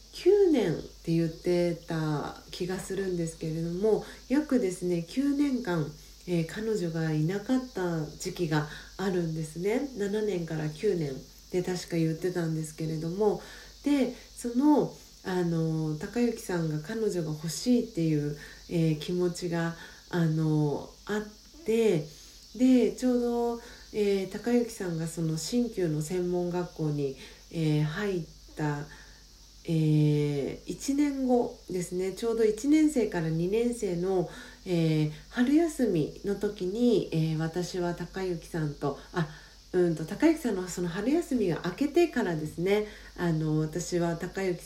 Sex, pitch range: female, 165-220 Hz